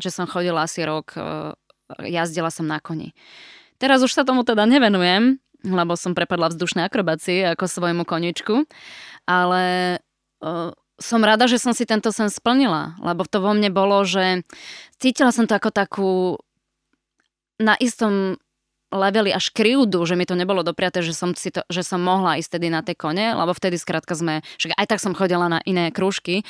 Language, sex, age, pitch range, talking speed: Slovak, female, 20-39, 175-210 Hz, 175 wpm